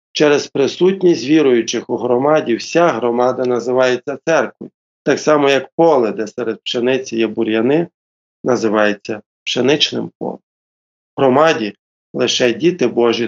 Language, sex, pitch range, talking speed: Ukrainian, male, 115-140 Hz, 115 wpm